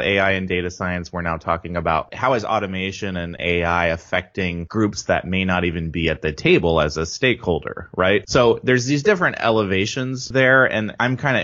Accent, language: American, English